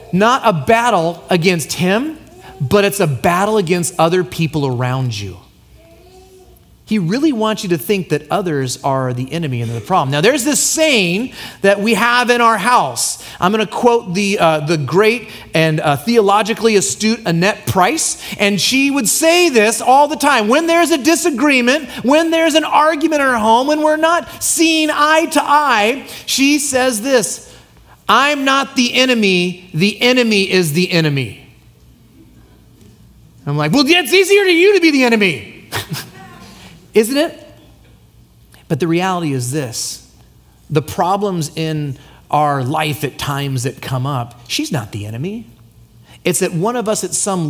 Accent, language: American, English